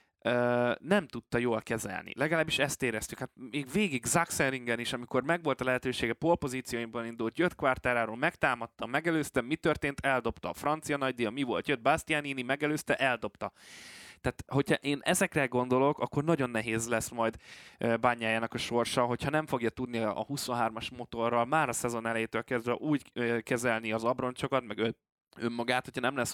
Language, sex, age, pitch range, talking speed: Hungarian, male, 20-39, 115-145 Hz, 160 wpm